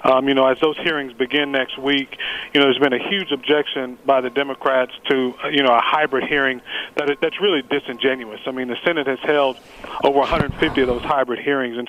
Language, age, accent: English, 40-59, American